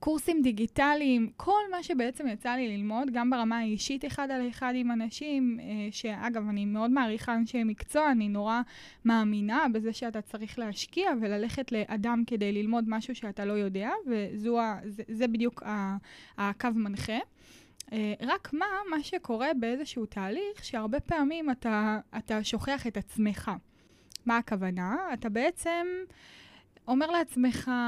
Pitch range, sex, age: 220-285 Hz, female, 20-39